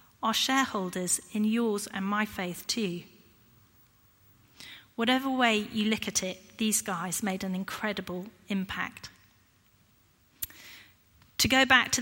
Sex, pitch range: female, 185-225 Hz